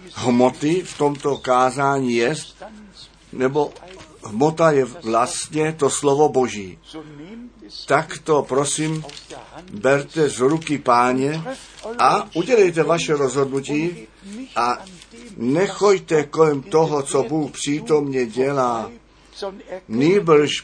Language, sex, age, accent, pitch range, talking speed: Czech, male, 50-69, native, 125-160 Hz, 95 wpm